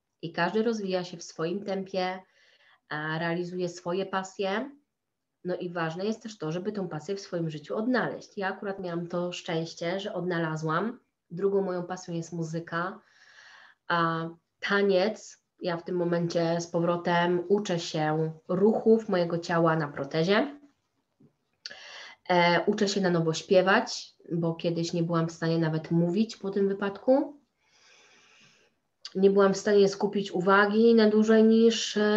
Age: 20-39